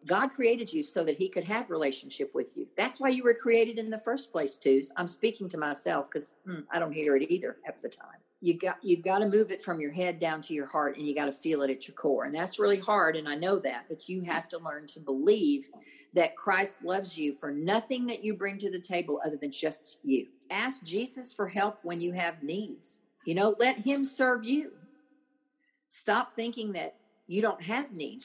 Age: 50-69